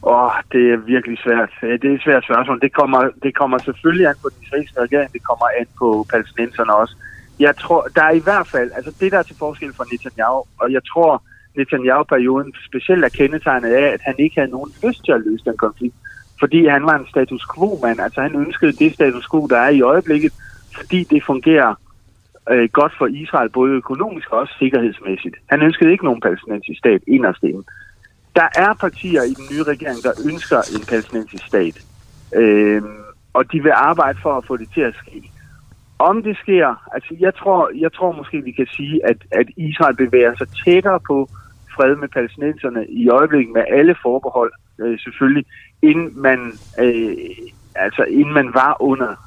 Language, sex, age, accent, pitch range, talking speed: Danish, male, 30-49, native, 120-160 Hz, 195 wpm